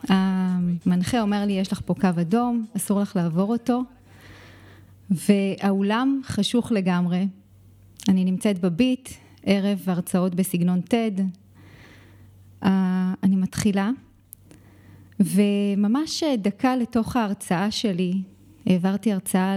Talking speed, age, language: 95 wpm, 20-39, Hebrew